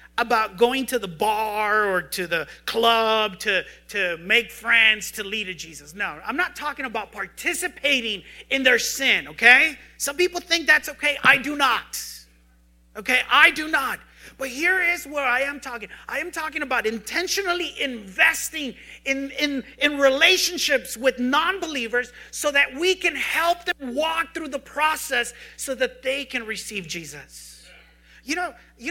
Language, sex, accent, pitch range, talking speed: English, male, American, 190-285 Hz, 160 wpm